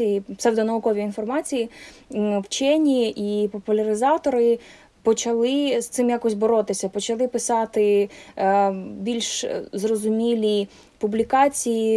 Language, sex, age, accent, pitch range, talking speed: Ukrainian, female, 20-39, native, 205-235 Hz, 85 wpm